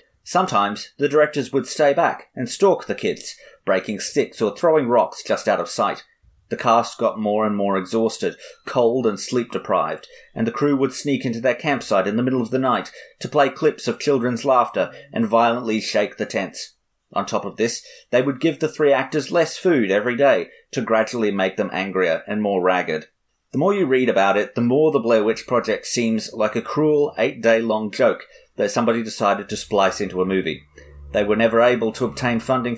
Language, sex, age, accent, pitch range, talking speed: English, male, 30-49, Australian, 105-135 Hz, 200 wpm